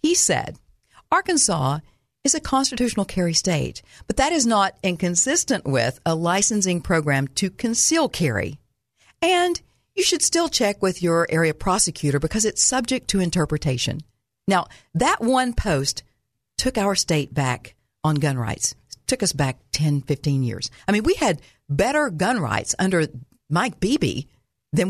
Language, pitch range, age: English, 145-235 Hz, 50-69